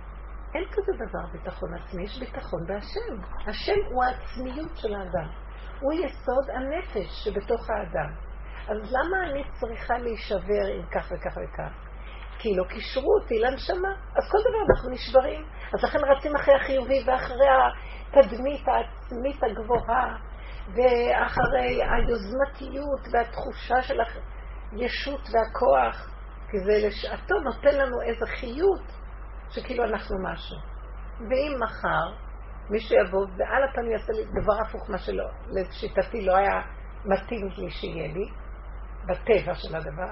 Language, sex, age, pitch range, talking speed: Hebrew, female, 50-69, 195-275 Hz, 125 wpm